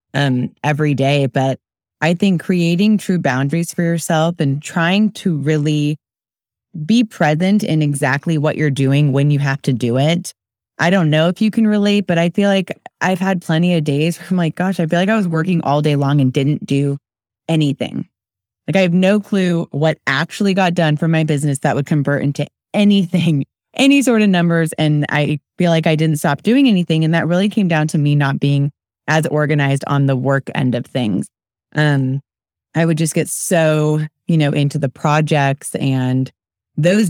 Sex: female